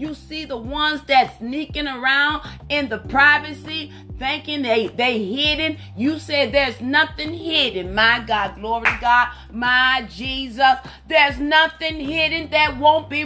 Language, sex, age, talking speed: English, female, 30-49, 145 wpm